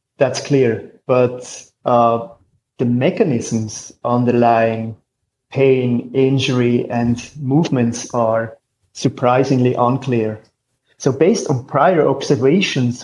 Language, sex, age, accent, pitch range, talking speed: English, male, 30-49, German, 125-145 Hz, 85 wpm